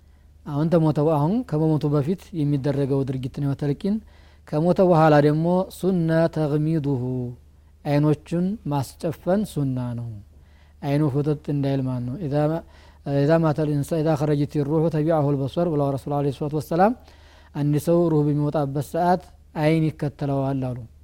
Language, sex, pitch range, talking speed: Amharic, male, 140-160 Hz, 125 wpm